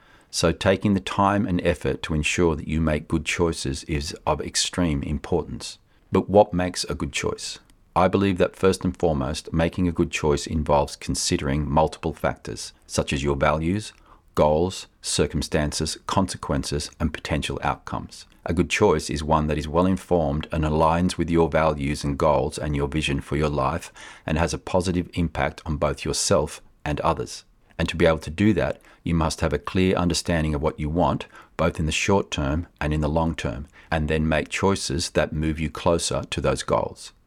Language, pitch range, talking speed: English, 75-90 Hz, 190 wpm